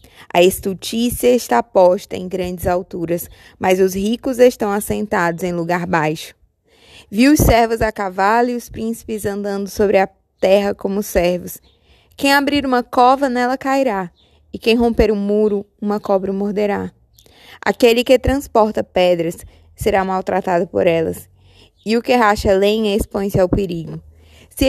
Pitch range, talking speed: 180-230 Hz, 145 wpm